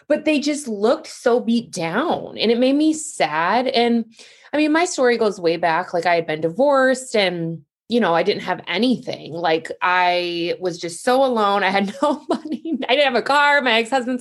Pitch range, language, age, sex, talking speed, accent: 180-255 Hz, English, 20-39, female, 205 wpm, American